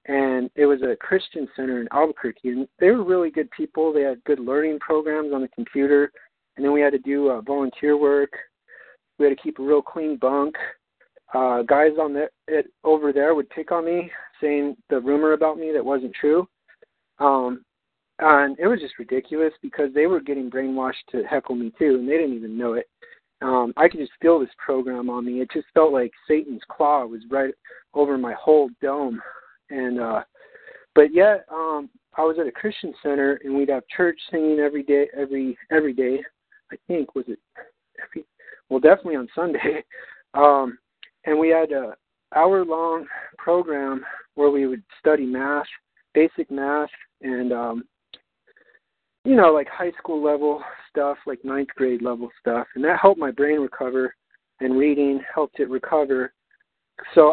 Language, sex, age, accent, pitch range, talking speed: English, male, 40-59, American, 135-160 Hz, 180 wpm